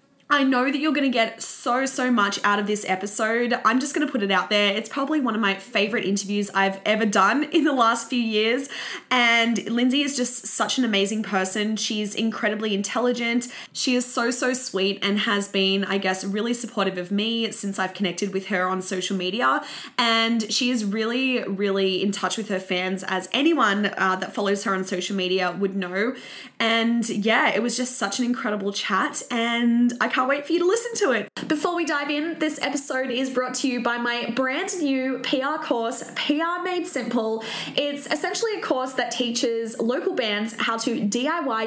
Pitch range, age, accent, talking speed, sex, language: 210-260 Hz, 20-39, Australian, 200 wpm, female, English